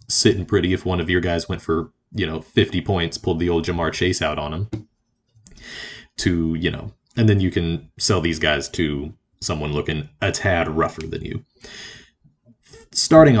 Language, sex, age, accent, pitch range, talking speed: English, male, 30-49, American, 90-115 Hz, 180 wpm